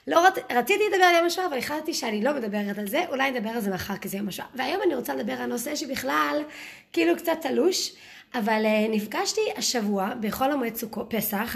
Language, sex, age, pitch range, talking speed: Hebrew, female, 20-39, 210-300 Hz, 205 wpm